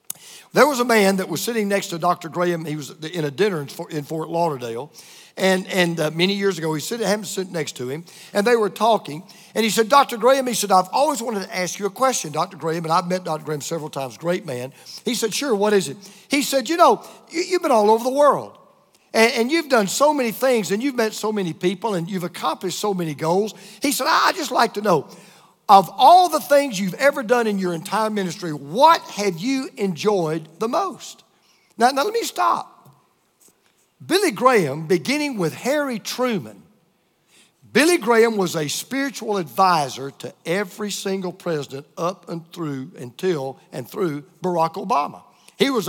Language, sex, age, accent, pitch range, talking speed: English, male, 50-69, American, 170-235 Hz, 200 wpm